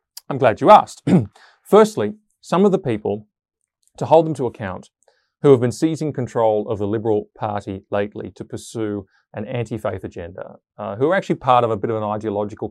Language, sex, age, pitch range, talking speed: English, male, 30-49, 105-140 Hz, 190 wpm